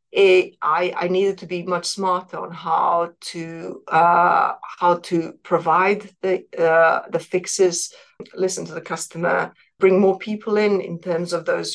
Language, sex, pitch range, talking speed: English, female, 170-205 Hz, 160 wpm